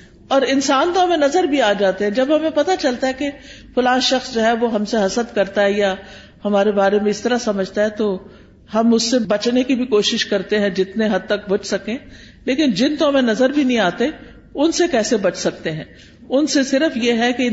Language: Urdu